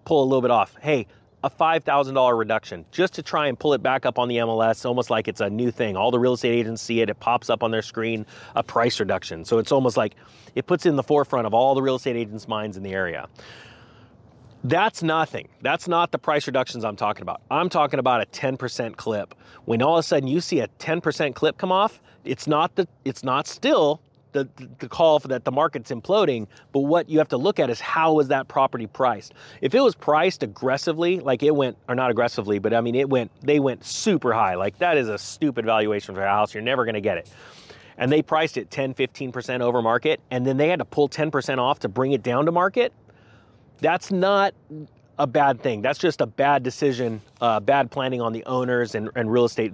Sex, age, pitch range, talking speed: male, 30-49, 115-145 Hz, 235 wpm